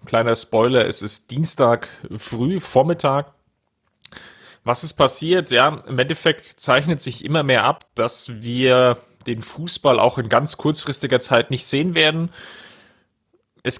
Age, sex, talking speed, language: 30-49, male, 135 wpm, German